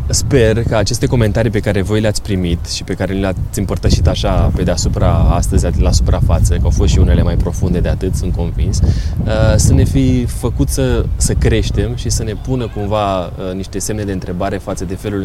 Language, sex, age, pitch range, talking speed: Romanian, male, 20-39, 90-110 Hz, 195 wpm